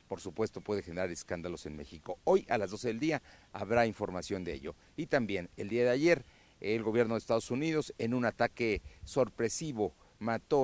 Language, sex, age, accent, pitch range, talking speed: Spanish, male, 50-69, Mexican, 105-145 Hz, 185 wpm